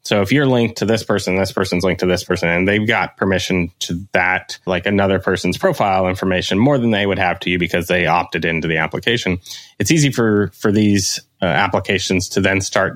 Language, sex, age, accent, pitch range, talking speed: English, male, 20-39, American, 95-110 Hz, 220 wpm